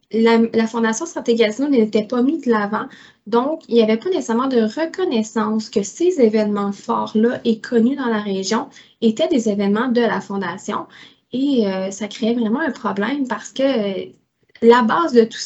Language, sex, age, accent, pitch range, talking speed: French, female, 20-39, Canadian, 210-240 Hz, 185 wpm